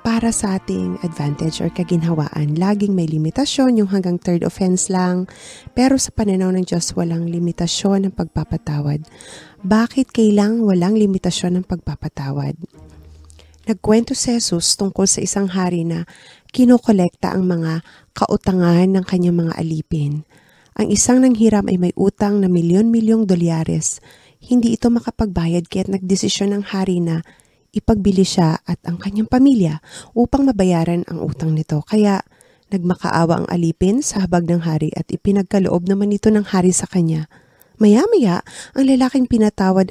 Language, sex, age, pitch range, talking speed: Filipino, female, 20-39, 170-210 Hz, 140 wpm